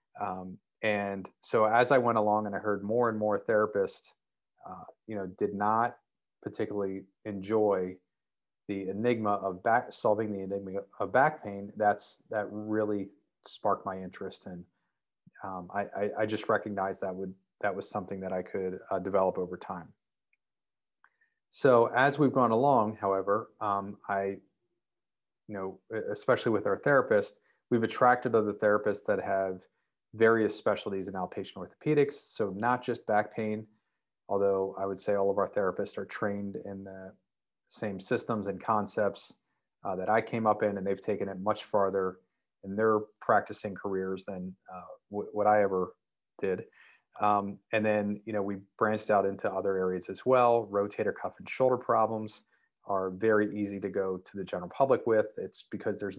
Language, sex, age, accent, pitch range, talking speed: English, male, 30-49, American, 95-110 Hz, 165 wpm